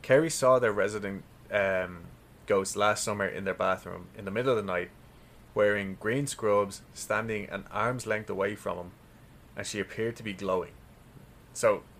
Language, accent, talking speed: English, Irish, 170 wpm